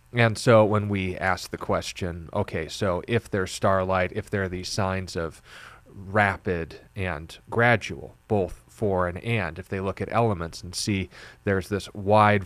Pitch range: 90-105 Hz